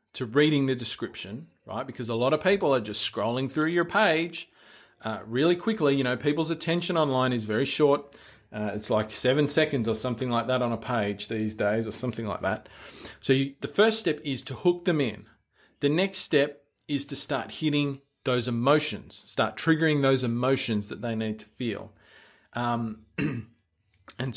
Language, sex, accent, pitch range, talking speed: English, male, Australian, 110-145 Hz, 180 wpm